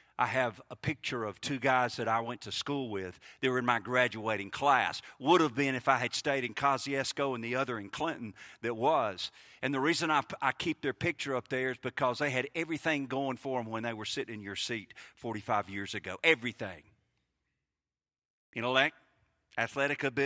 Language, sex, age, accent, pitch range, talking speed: English, male, 50-69, American, 120-155 Hz, 195 wpm